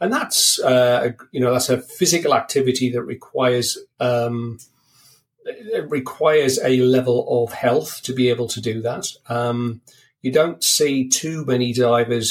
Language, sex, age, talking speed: English, male, 40-59, 150 wpm